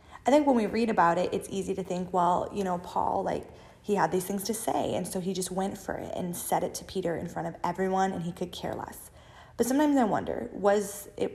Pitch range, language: 180-220 Hz, English